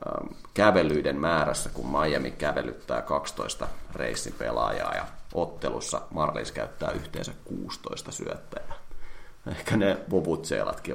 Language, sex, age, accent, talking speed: Finnish, male, 30-49, native, 95 wpm